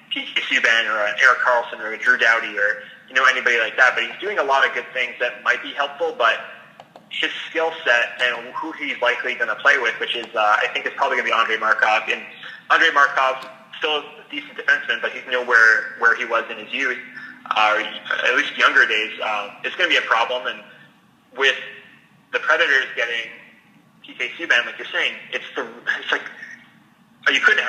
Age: 30-49